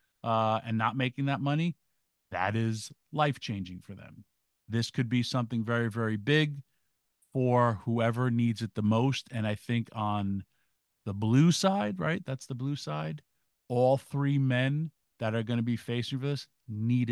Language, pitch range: English, 110-130 Hz